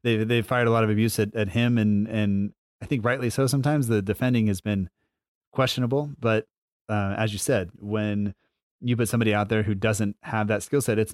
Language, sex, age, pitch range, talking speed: English, male, 30-49, 100-115 Hz, 215 wpm